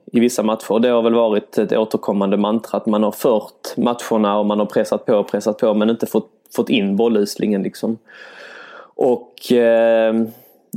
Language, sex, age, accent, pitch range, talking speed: English, male, 20-39, Swedish, 105-120 Hz, 185 wpm